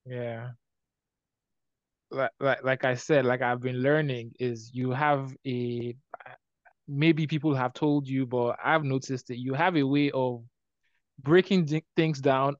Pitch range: 125-150 Hz